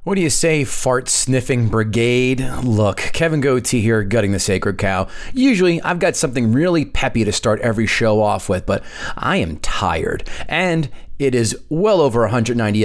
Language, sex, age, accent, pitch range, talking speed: English, male, 30-49, American, 110-155 Hz, 175 wpm